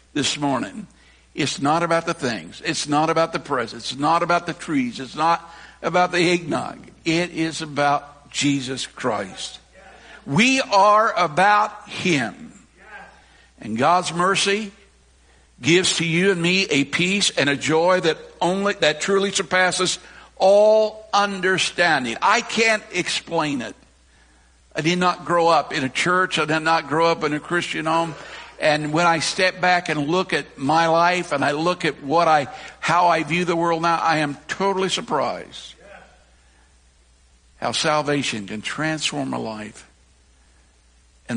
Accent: American